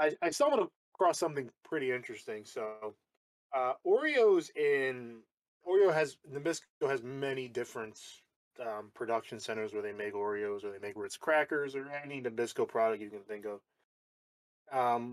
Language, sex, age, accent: English, male, 20-39, American